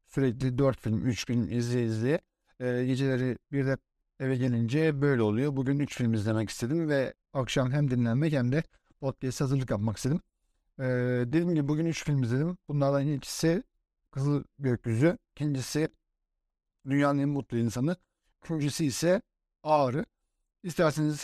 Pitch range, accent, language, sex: 125-150 Hz, native, Turkish, male